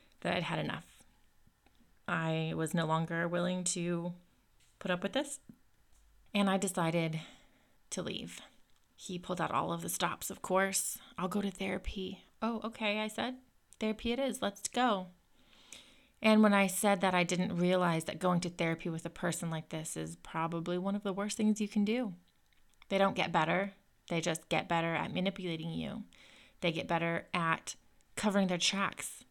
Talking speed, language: 175 wpm, English